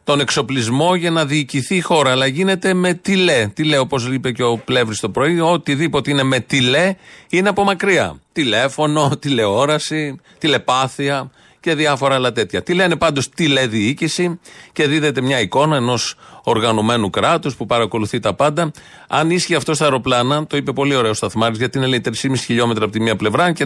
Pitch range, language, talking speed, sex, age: 125-160 Hz, Greek, 180 wpm, male, 40-59